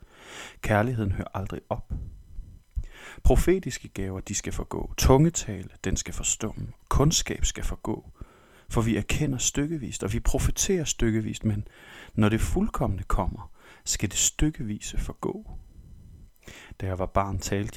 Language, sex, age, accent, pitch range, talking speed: Danish, male, 30-49, native, 90-115 Hz, 130 wpm